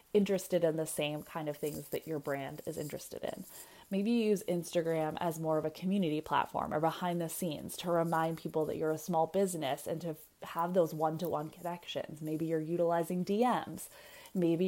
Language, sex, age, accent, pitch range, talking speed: English, female, 20-39, American, 160-205 Hz, 190 wpm